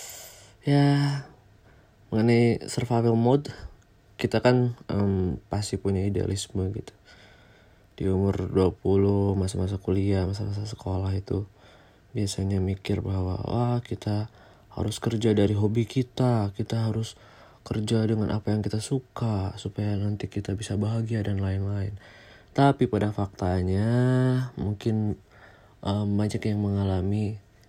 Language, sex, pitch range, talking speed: Indonesian, male, 95-115 Hz, 115 wpm